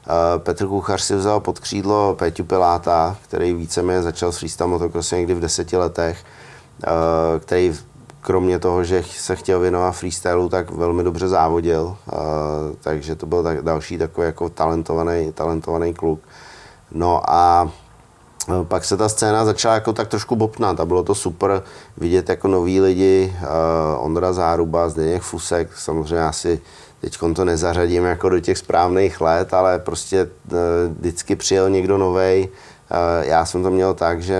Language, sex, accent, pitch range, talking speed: Czech, male, native, 85-95 Hz, 155 wpm